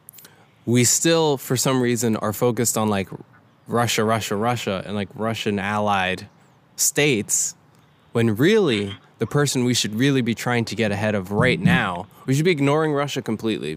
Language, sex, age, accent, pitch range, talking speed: English, male, 10-29, American, 105-125 Hz, 160 wpm